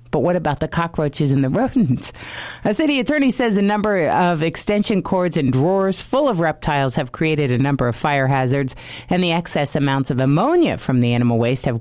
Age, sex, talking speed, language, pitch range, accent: 40-59, female, 205 wpm, English, 135-185 Hz, American